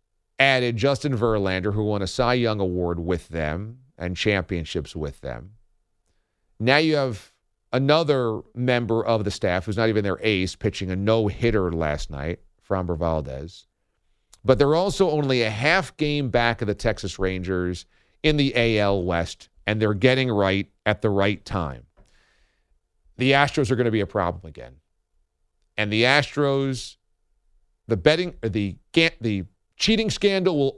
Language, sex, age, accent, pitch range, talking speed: English, male, 40-59, American, 95-130 Hz, 150 wpm